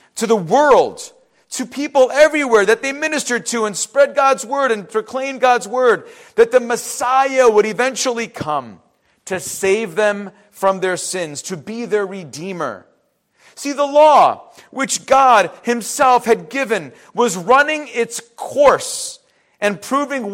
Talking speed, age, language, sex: 140 wpm, 40-59, English, male